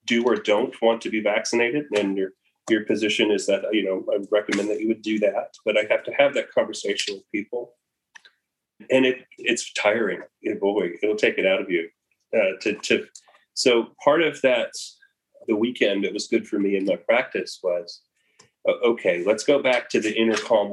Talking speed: 205 wpm